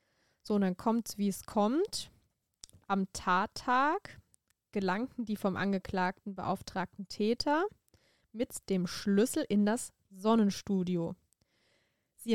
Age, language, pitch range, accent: 20-39, German, 195-255 Hz, German